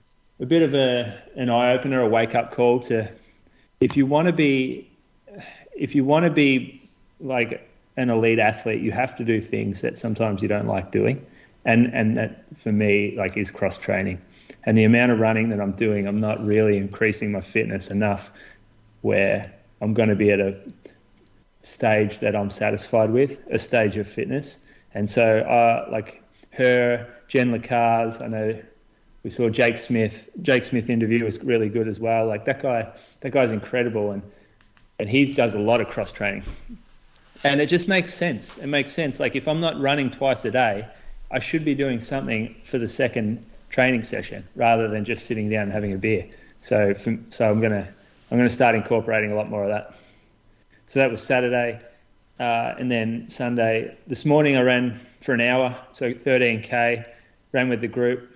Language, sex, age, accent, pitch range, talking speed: English, male, 30-49, Australian, 110-125 Hz, 190 wpm